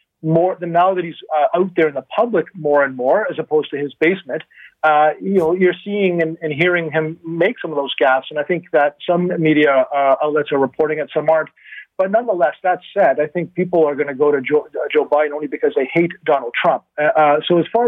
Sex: male